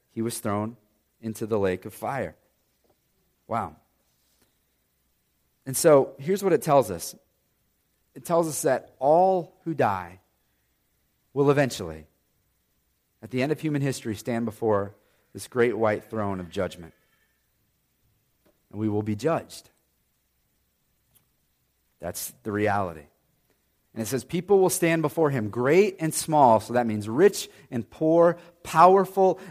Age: 40-59